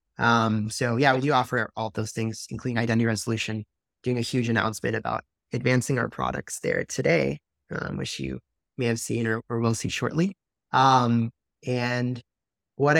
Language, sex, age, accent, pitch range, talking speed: English, male, 20-39, American, 115-140 Hz, 165 wpm